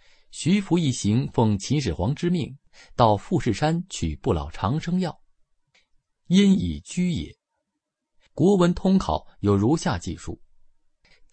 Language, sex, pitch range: Chinese, male, 95-155 Hz